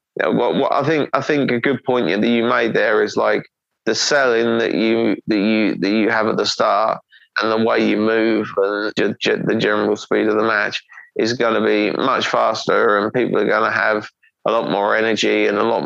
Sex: male